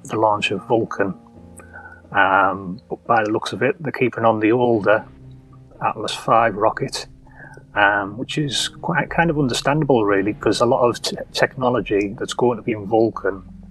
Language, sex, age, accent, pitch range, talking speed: English, male, 30-49, British, 95-120 Hz, 170 wpm